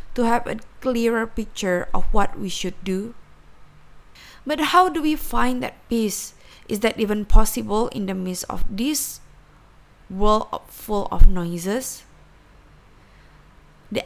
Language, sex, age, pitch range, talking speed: Indonesian, female, 20-39, 185-255 Hz, 130 wpm